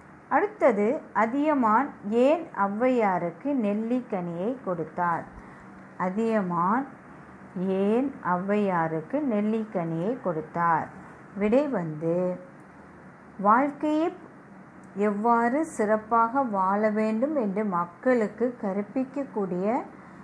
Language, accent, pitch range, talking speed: Tamil, native, 185-250 Hz, 60 wpm